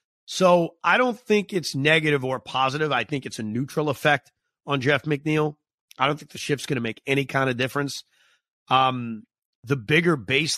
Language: English